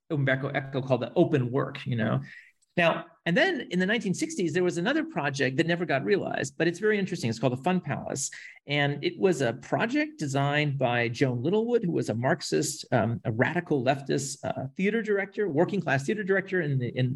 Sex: male